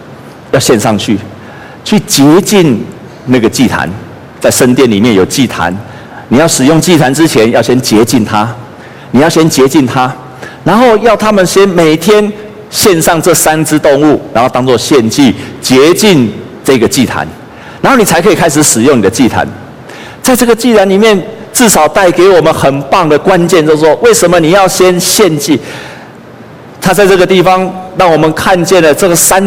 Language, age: Chinese, 50-69